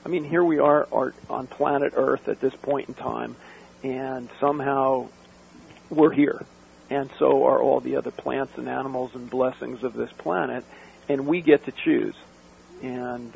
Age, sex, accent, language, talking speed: 50-69, male, American, English, 170 wpm